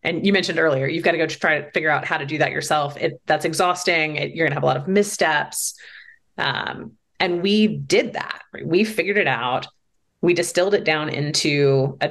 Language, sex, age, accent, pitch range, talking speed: English, female, 30-49, American, 150-195 Hz, 220 wpm